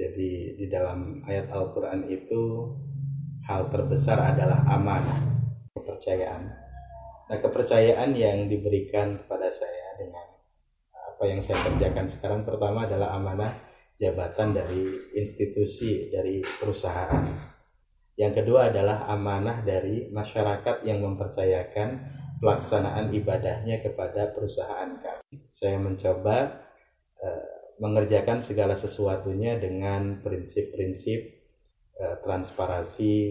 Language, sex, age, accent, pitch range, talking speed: Indonesian, male, 20-39, native, 95-120 Hz, 95 wpm